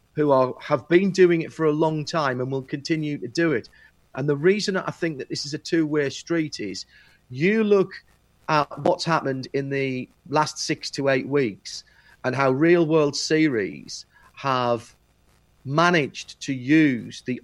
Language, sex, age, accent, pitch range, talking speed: English, male, 40-59, British, 140-170 Hz, 170 wpm